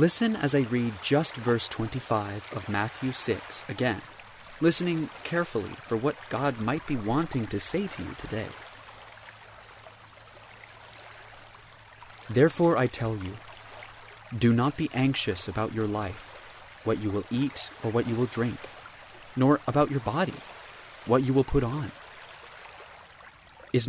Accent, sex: American, male